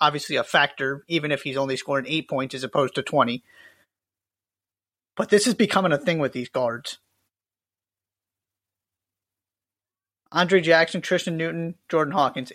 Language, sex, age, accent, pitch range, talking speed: English, male, 30-49, American, 120-175 Hz, 140 wpm